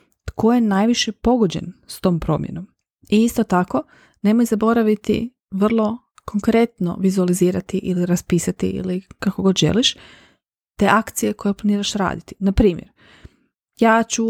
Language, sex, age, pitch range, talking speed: Croatian, female, 30-49, 180-220 Hz, 125 wpm